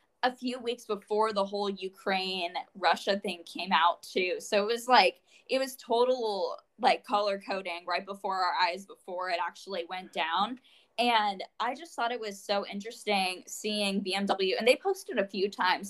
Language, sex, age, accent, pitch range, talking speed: English, female, 10-29, American, 180-220 Hz, 175 wpm